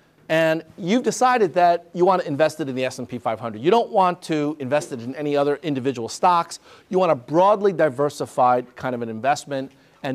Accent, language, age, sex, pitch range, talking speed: American, English, 50-69, male, 140-180 Hz, 200 wpm